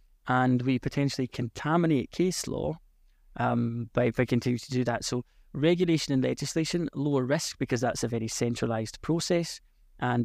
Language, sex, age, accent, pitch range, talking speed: English, male, 20-39, British, 120-145 Hz, 150 wpm